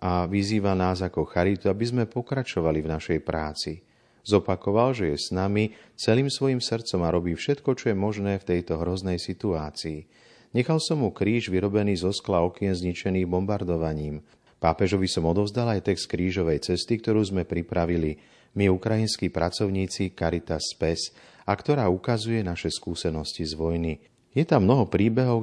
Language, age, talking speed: Slovak, 40-59, 155 wpm